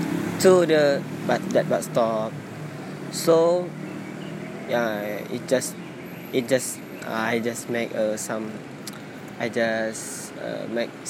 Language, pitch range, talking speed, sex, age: English, 115-145 Hz, 120 wpm, male, 20-39